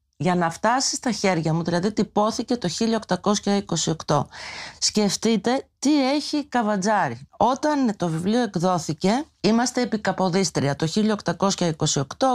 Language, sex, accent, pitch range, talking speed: Greek, female, native, 175-235 Hz, 110 wpm